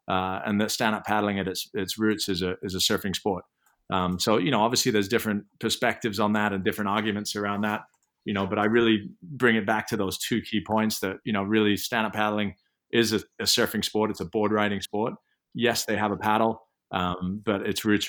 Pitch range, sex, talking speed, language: 95-110 Hz, male, 225 wpm, English